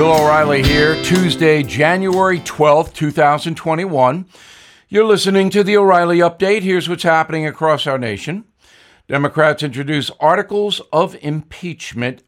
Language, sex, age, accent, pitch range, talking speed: English, male, 60-79, American, 135-180 Hz, 115 wpm